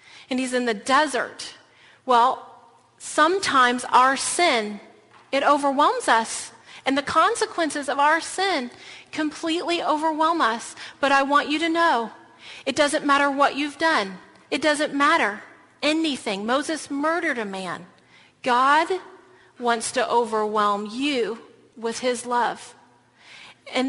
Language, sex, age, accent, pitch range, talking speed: English, female, 40-59, American, 235-305 Hz, 125 wpm